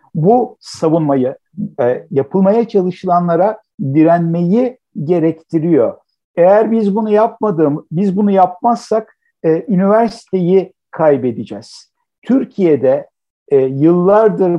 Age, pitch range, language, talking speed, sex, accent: 60-79, 145-195 Hz, Turkish, 70 wpm, male, native